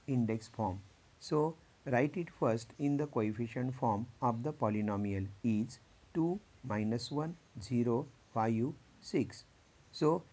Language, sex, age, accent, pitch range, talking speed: Marathi, male, 50-69, native, 115-140 Hz, 120 wpm